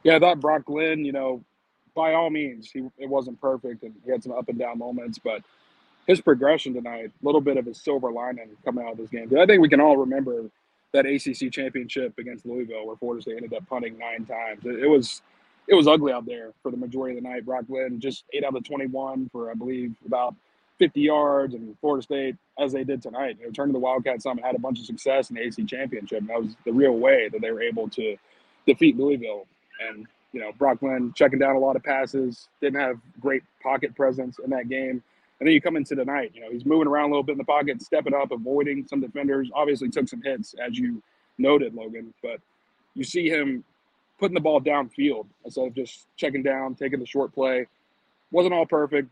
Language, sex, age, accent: English, male, 20-39, American